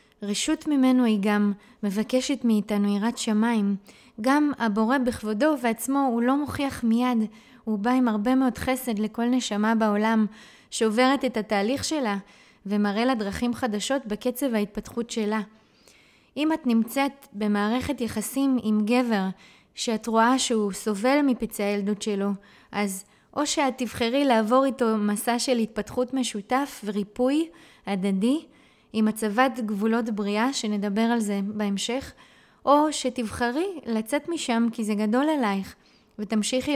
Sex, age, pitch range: female, 20-39, 215-255 Hz